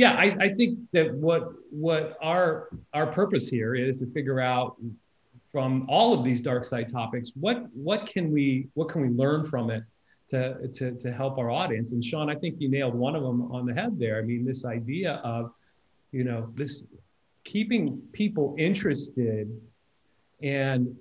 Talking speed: 180 wpm